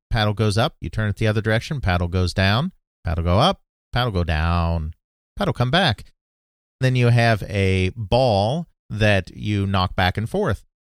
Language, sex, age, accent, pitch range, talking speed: English, male, 40-59, American, 90-115 Hz, 175 wpm